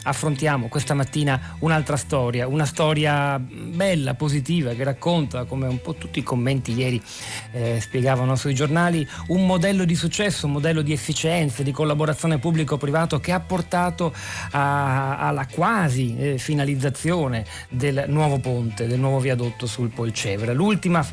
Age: 40-59